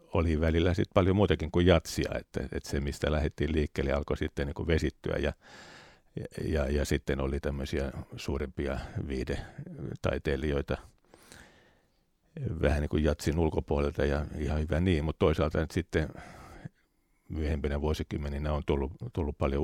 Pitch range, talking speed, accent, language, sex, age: 70-80 Hz, 120 wpm, native, Finnish, male, 50-69